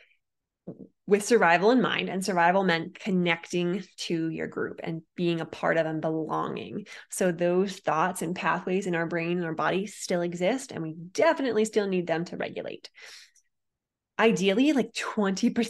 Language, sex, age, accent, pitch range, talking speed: English, female, 20-39, American, 170-225 Hz, 155 wpm